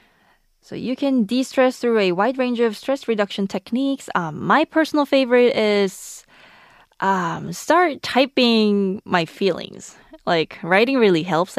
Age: 20-39